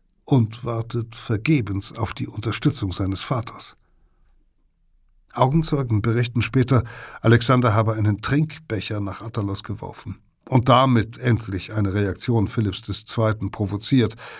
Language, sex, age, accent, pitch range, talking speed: German, male, 60-79, German, 100-125 Hz, 110 wpm